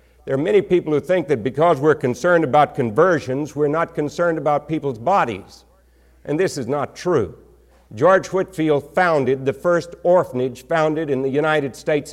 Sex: male